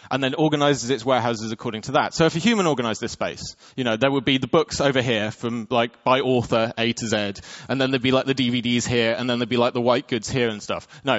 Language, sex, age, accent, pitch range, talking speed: English, male, 20-39, British, 115-150 Hz, 275 wpm